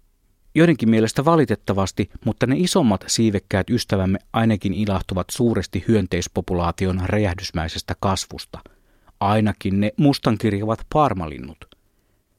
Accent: native